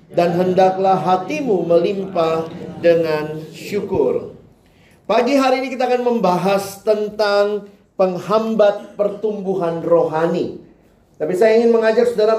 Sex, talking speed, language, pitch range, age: male, 100 wpm, Indonesian, 160-225 Hz, 40-59